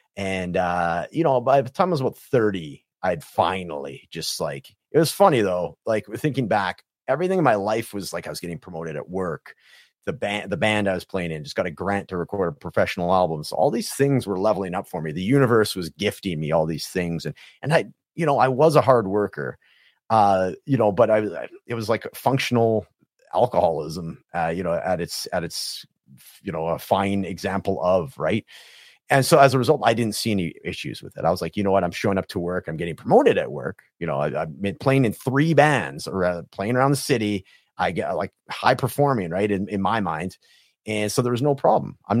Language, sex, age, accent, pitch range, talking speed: English, male, 30-49, American, 90-130 Hz, 230 wpm